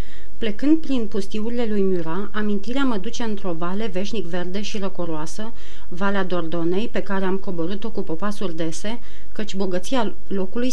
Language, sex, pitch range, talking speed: Romanian, female, 185-220 Hz, 145 wpm